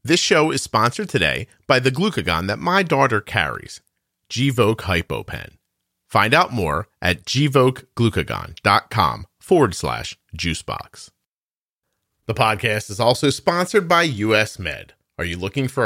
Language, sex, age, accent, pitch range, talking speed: English, male, 40-59, American, 95-135 Hz, 130 wpm